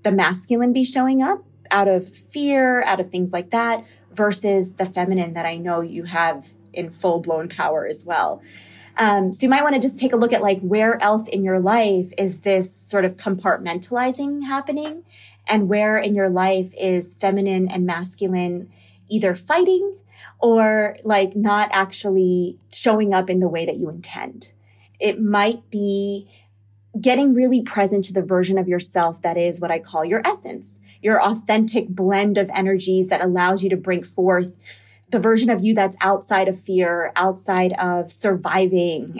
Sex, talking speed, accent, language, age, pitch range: female, 175 wpm, American, English, 20-39, 175-215 Hz